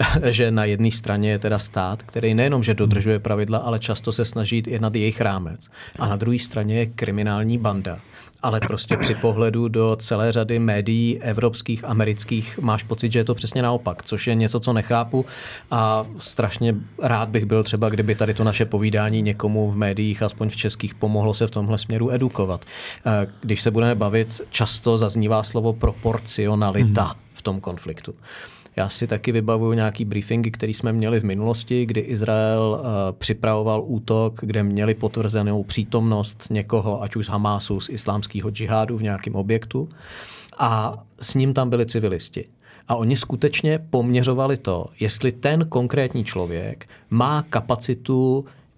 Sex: male